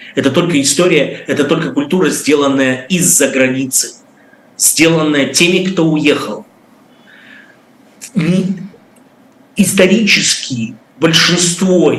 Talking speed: 75 wpm